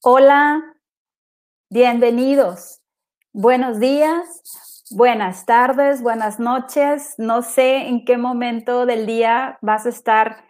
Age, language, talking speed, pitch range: 30-49, English, 105 wpm, 225-270 Hz